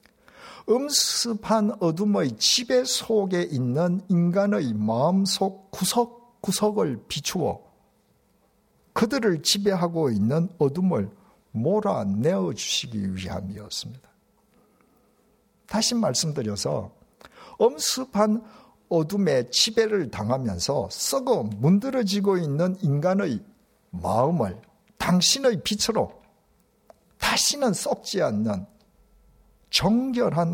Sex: male